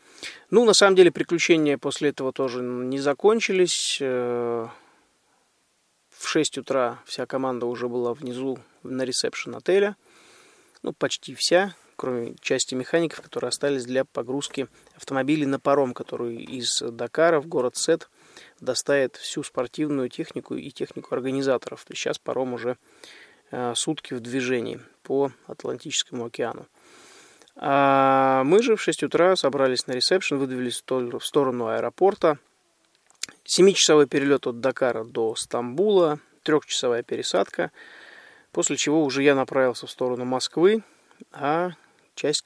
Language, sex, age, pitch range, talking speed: Russian, male, 20-39, 125-155 Hz, 125 wpm